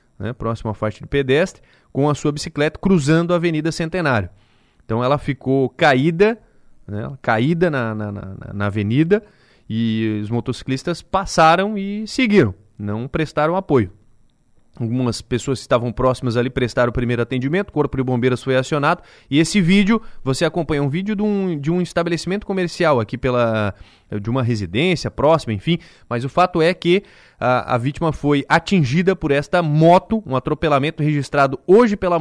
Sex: male